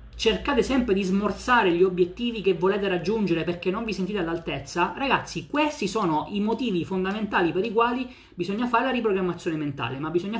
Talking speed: 175 wpm